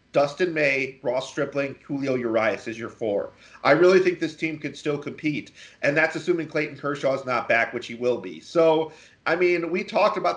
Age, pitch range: 30-49, 125-160 Hz